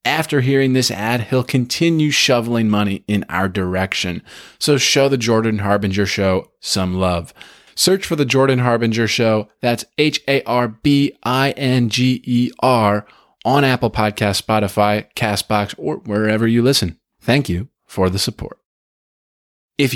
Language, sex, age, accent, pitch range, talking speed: English, male, 20-39, American, 100-125 Hz, 125 wpm